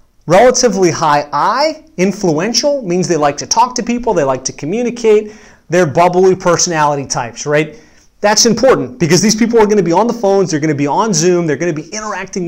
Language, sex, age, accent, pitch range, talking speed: English, male, 30-49, American, 160-215 Hz, 190 wpm